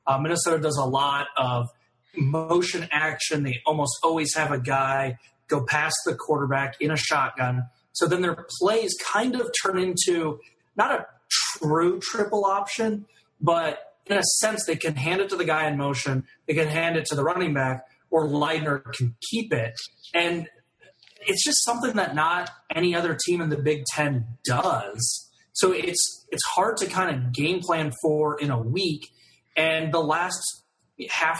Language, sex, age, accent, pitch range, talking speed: English, male, 30-49, American, 135-170 Hz, 175 wpm